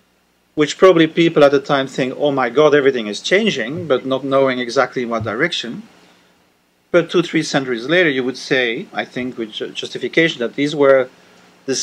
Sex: male